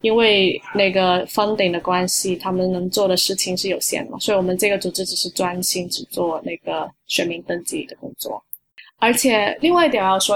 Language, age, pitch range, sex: Chinese, 20-39, 185-210 Hz, female